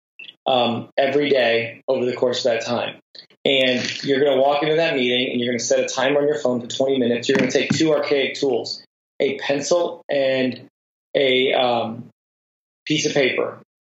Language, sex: English, male